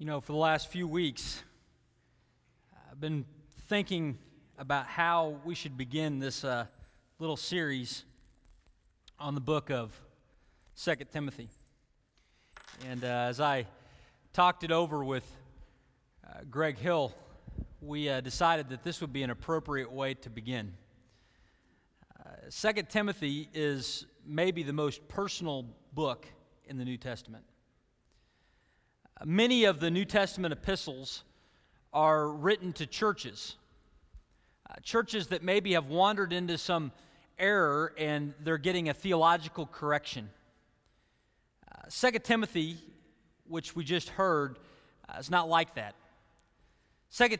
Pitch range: 135-180 Hz